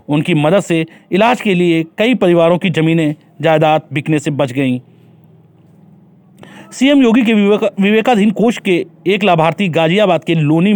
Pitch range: 145-185 Hz